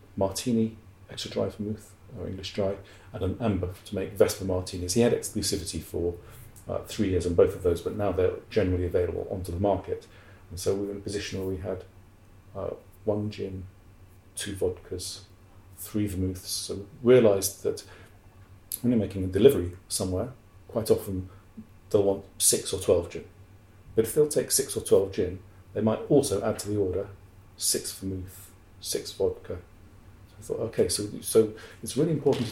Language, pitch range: English, 95-110 Hz